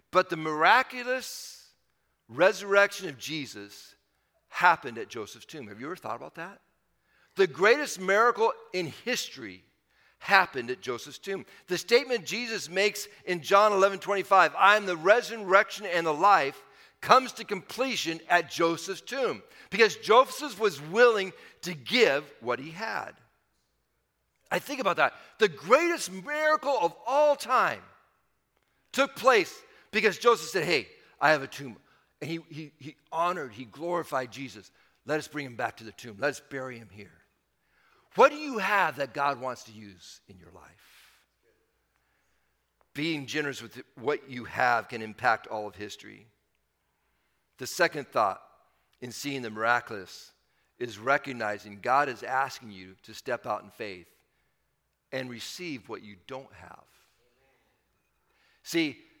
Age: 50-69